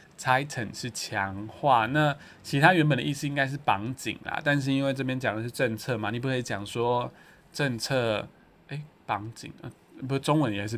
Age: 20-39